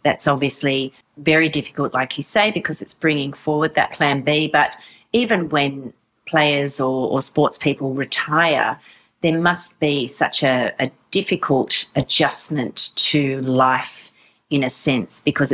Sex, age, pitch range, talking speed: female, 40-59, 135-160 Hz, 145 wpm